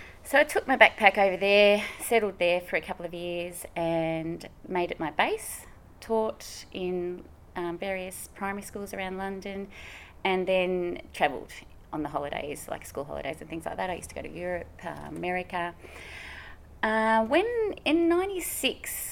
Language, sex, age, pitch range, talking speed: English, female, 30-49, 165-210 Hz, 165 wpm